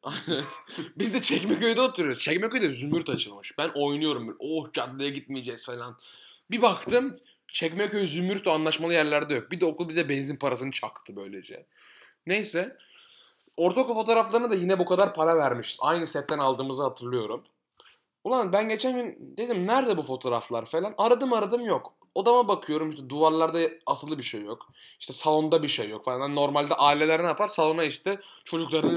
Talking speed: 160 wpm